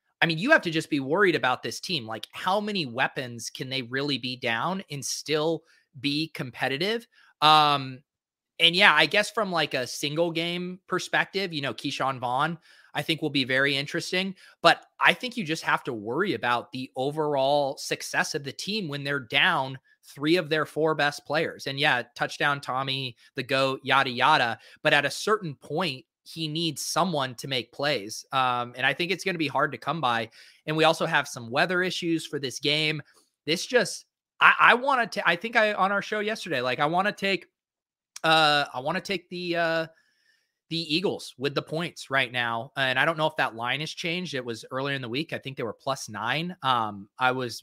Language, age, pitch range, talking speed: English, 30-49, 135-170 Hz, 205 wpm